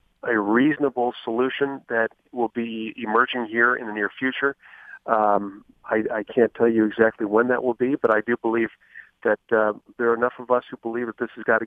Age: 40-59